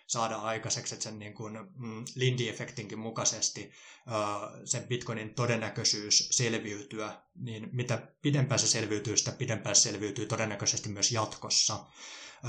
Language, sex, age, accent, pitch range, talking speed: Finnish, male, 20-39, native, 110-125 Hz, 115 wpm